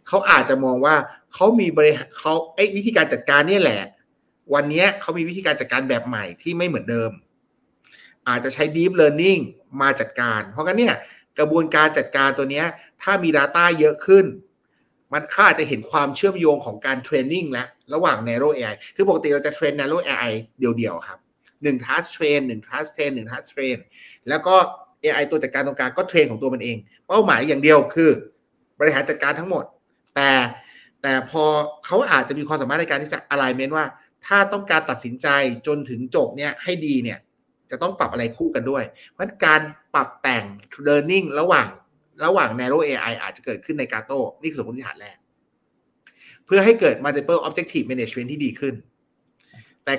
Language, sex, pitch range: Thai, male, 130-170 Hz